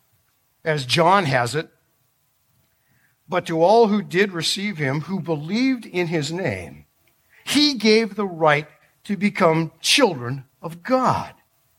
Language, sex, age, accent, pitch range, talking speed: English, male, 50-69, American, 135-215 Hz, 125 wpm